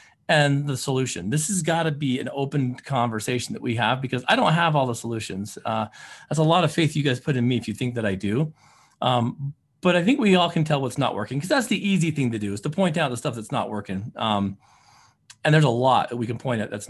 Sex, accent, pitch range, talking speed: male, American, 120-170 Hz, 270 wpm